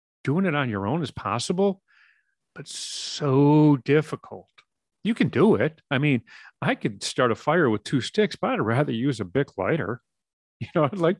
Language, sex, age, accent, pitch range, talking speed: English, male, 40-59, American, 100-145 Hz, 190 wpm